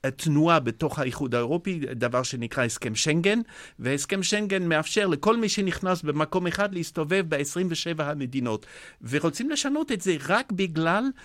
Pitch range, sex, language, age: 130-170 Hz, male, Hebrew, 50-69